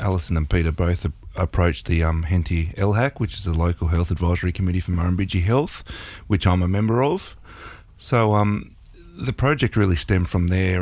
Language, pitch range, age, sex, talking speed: English, 90-110 Hz, 30-49, male, 175 wpm